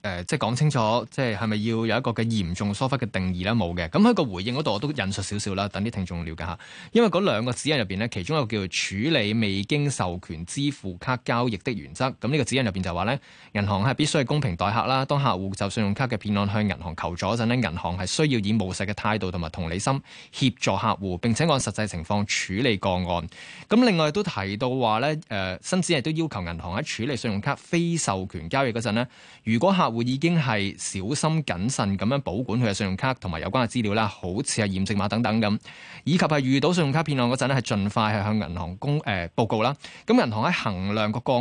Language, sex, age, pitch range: Chinese, male, 20-39, 100-135 Hz